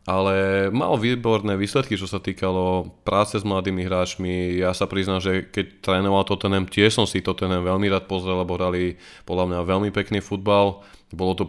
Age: 20-39